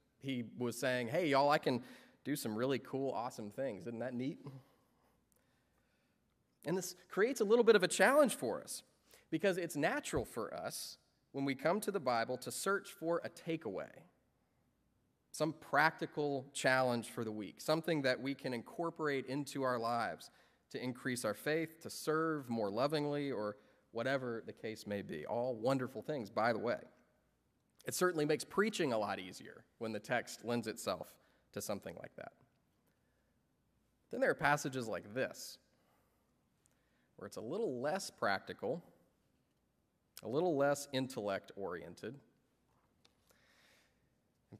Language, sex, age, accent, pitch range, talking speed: English, male, 30-49, American, 115-155 Hz, 150 wpm